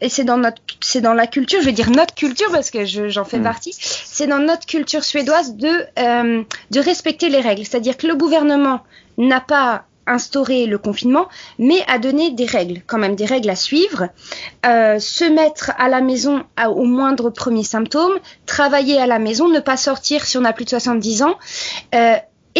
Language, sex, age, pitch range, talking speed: French, female, 20-39, 240-320 Hz, 200 wpm